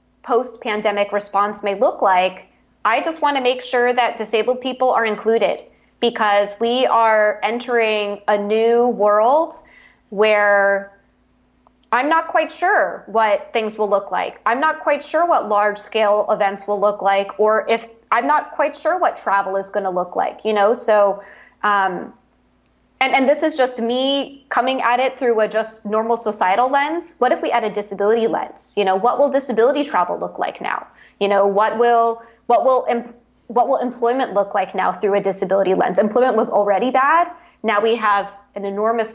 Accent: American